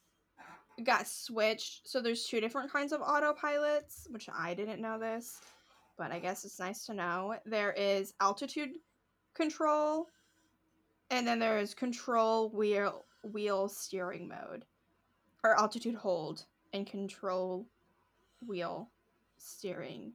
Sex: female